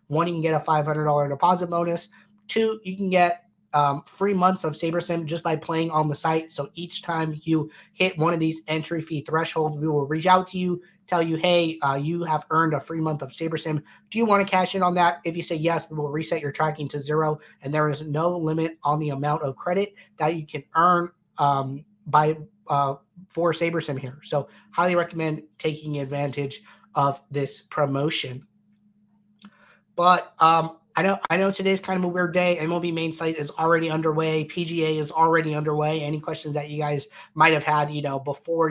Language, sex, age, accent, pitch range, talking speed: English, male, 30-49, American, 150-180 Hz, 205 wpm